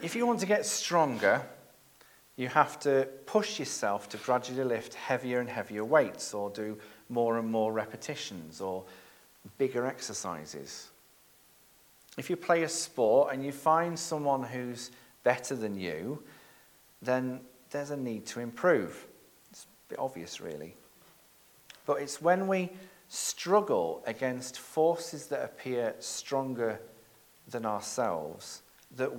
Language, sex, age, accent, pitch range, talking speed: English, male, 40-59, British, 110-150 Hz, 130 wpm